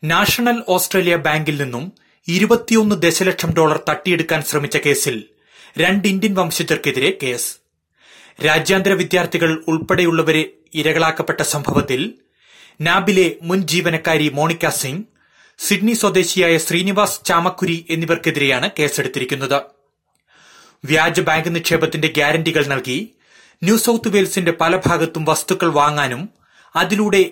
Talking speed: 95 wpm